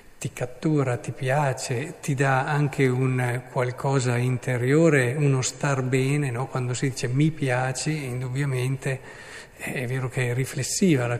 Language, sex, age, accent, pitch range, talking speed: Italian, male, 50-69, native, 125-155 Hz, 135 wpm